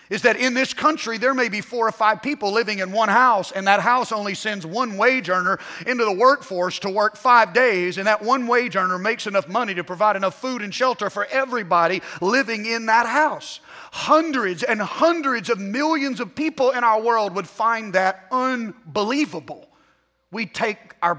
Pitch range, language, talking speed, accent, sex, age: 175-235 Hz, English, 195 wpm, American, male, 30-49